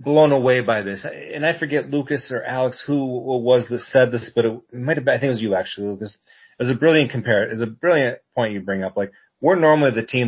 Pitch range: 115-155 Hz